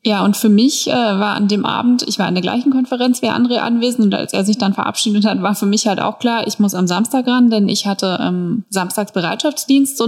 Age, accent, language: 20-39, German, German